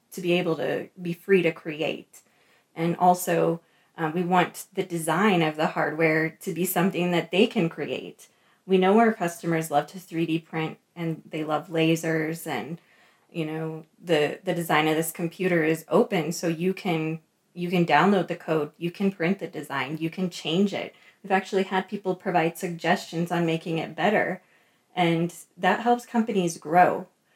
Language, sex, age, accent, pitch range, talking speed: English, female, 20-39, American, 160-185 Hz, 175 wpm